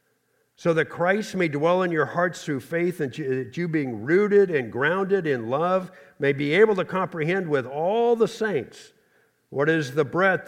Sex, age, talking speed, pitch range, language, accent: male, 50-69, 185 wpm, 130-175 Hz, English, American